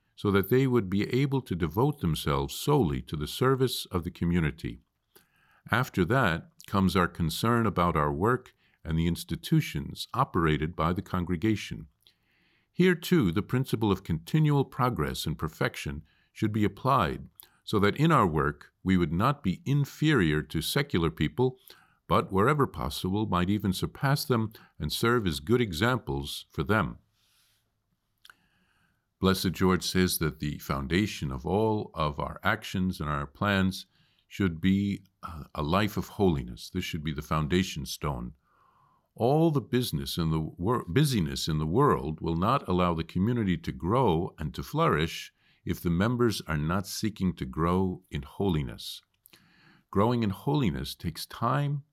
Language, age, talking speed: English, 50-69, 150 wpm